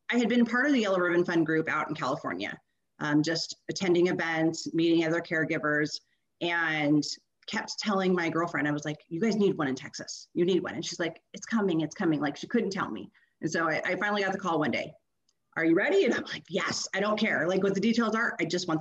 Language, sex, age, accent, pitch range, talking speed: English, female, 30-49, American, 160-210 Hz, 245 wpm